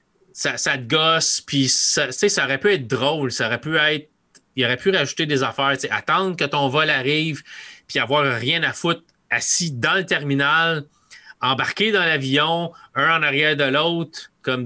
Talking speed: 180 wpm